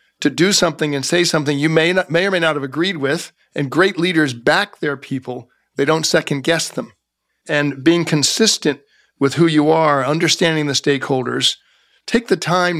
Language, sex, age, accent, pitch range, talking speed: English, male, 50-69, American, 140-175 Hz, 185 wpm